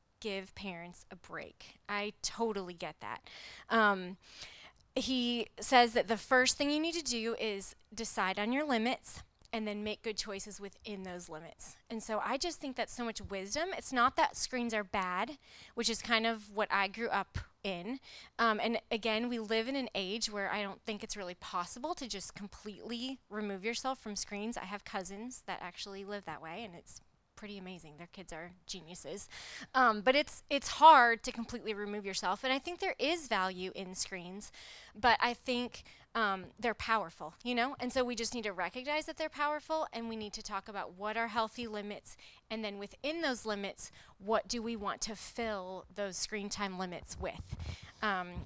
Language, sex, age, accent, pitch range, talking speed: English, female, 20-39, American, 195-240 Hz, 195 wpm